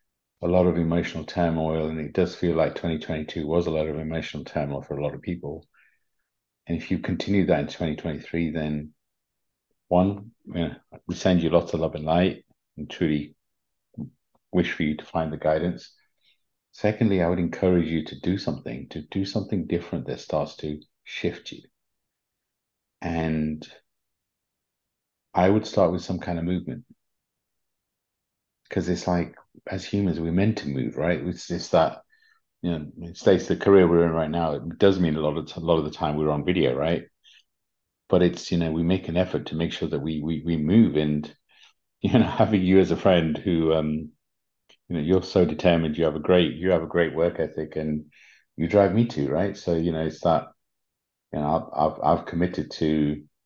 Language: English